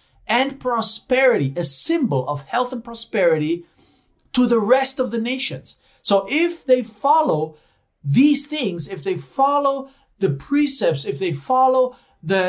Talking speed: 140 wpm